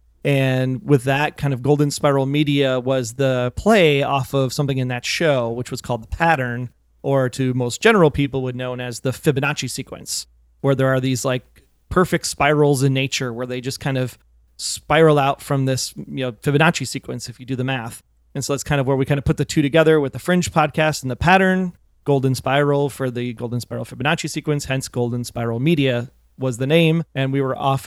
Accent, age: American, 30-49